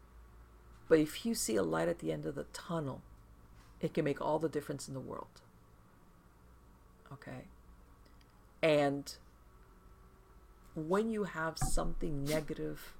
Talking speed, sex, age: 130 wpm, female, 50-69